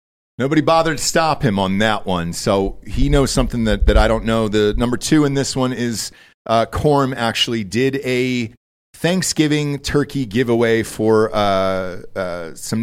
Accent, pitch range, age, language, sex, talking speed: American, 100-125 Hz, 40-59, English, male, 170 wpm